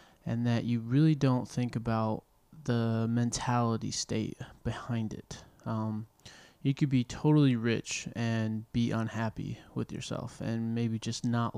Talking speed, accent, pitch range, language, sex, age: 140 wpm, American, 115-125 Hz, English, male, 20-39